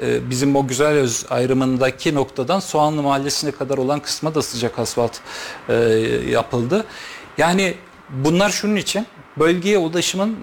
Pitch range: 125-165 Hz